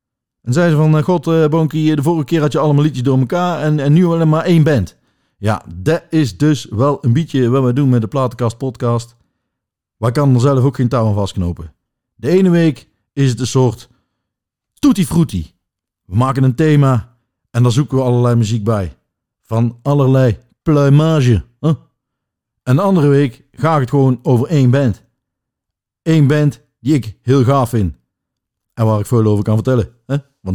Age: 50-69